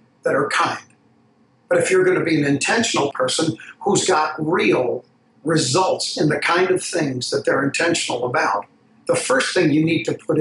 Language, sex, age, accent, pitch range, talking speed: English, male, 60-79, American, 155-200 Hz, 180 wpm